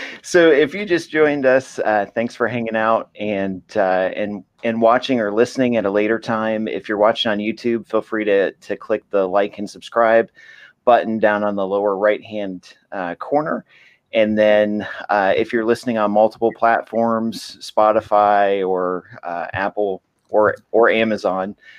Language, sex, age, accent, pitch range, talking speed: English, male, 30-49, American, 100-115 Hz, 170 wpm